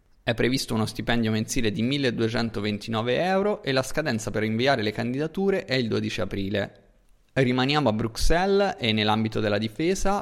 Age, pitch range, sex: 20-39, 110-145 Hz, male